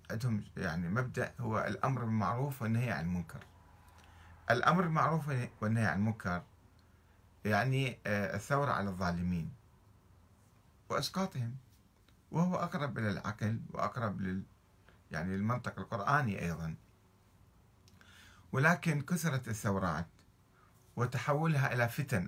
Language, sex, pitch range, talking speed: Arabic, male, 95-130 Hz, 90 wpm